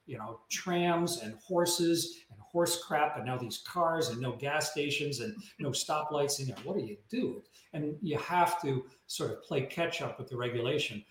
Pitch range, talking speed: 120-155 Hz, 200 wpm